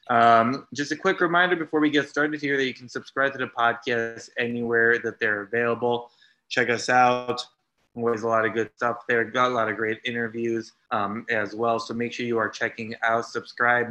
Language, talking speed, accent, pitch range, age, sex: English, 205 wpm, American, 115-125 Hz, 20-39, male